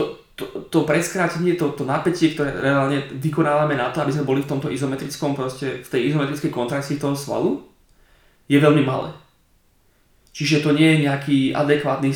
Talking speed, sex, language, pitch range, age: 165 wpm, male, Slovak, 130-150 Hz, 20-39